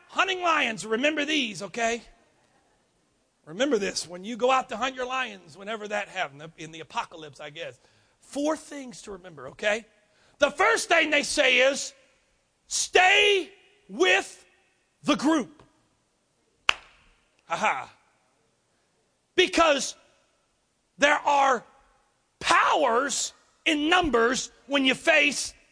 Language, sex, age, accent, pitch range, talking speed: English, male, 40-59, American, 260-345 Hz, 110 wpm